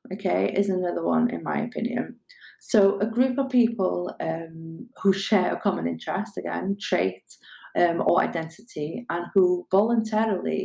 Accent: British